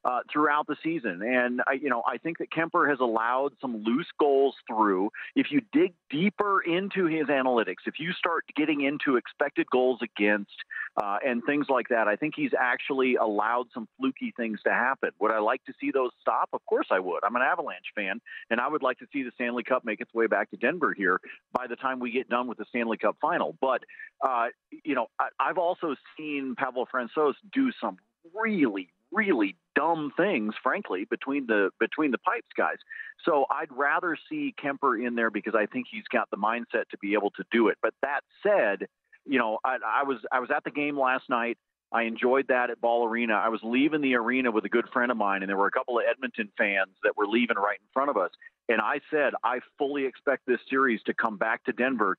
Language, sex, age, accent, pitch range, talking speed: English, male, 40-59, American, 120-165 Hz, 225 wpm